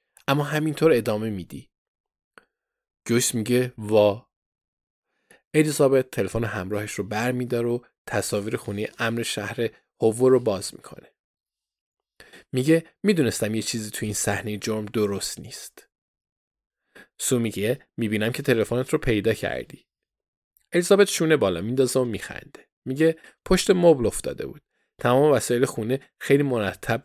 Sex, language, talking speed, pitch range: male, Persian, 125 wpm, 105-145 Hz